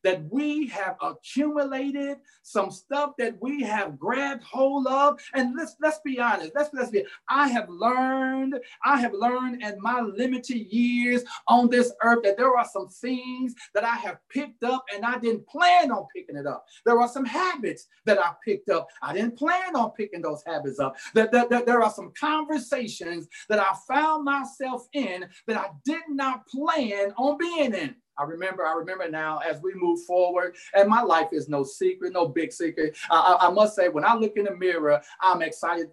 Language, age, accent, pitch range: English, 40-59, American, 185-275 Hz